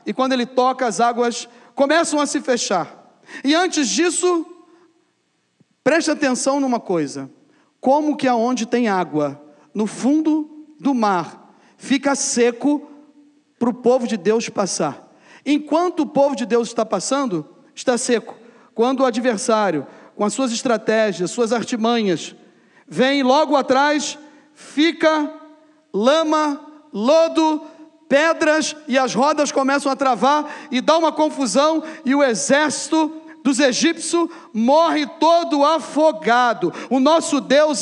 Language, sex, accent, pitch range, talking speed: Portuguese, male, Brazilian, 260-315 Hz, 130 wpm